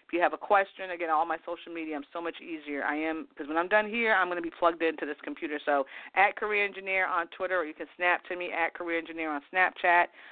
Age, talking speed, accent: 40-59, 270 wpm, American